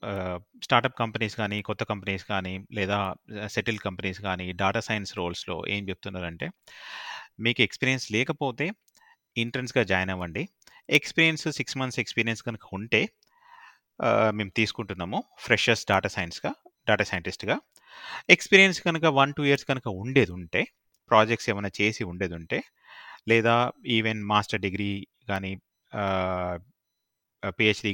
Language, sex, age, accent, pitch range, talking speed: Telugu, male, 30-49, native, 100-120 Hz, 115 wpm